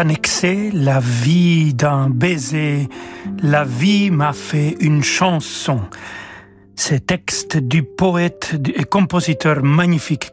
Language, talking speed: French, 110 wpm